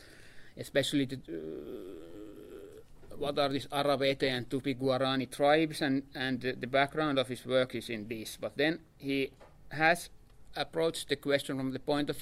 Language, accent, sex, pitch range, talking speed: Finnish, native, male, 130-150 Hz, 155 wpm